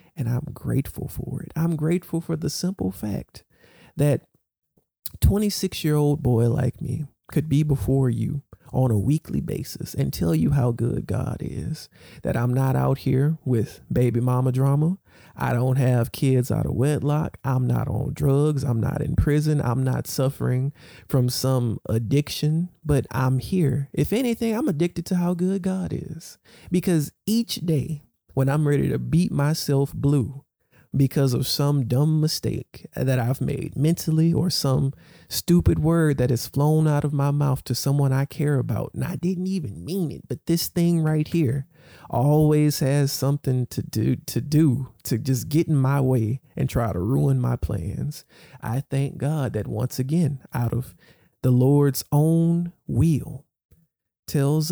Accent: American